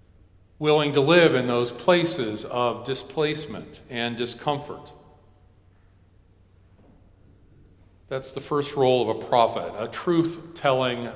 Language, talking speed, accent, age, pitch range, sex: English, 100 wpm, American, 50-69, 95-140 Hz, male